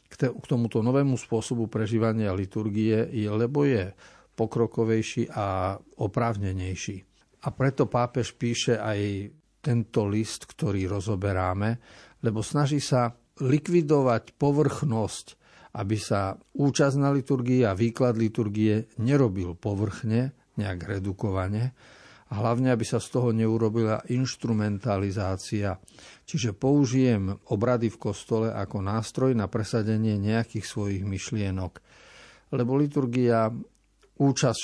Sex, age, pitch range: male, 50-69, 105-125 Hz